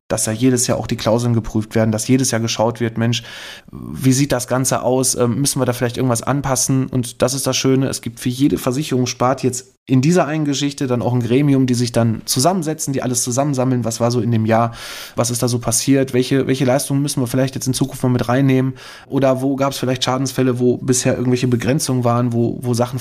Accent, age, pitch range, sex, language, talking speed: German, 20-39, 120-135 Hz, male, German, 235 wpm